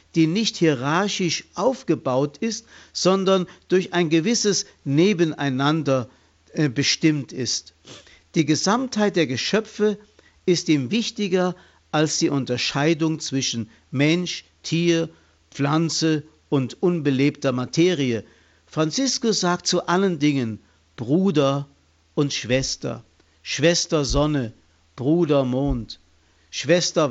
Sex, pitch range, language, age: male, 130-180 Hz, German, 50-69